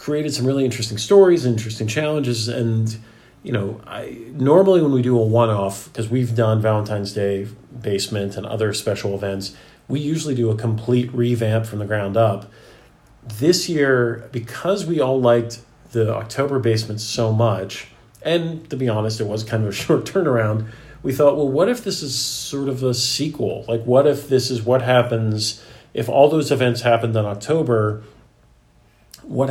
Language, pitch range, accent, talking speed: English, 105-130 Hz, American, 175 wpm